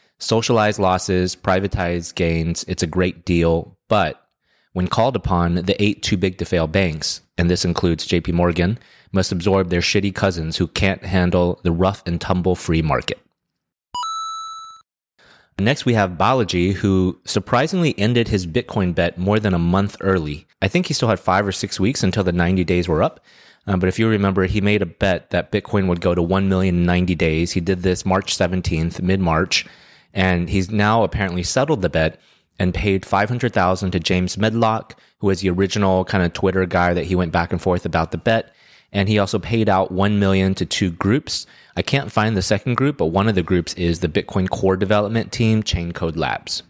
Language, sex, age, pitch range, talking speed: English, male, 30-49, 90-110 Hz, 185 wpm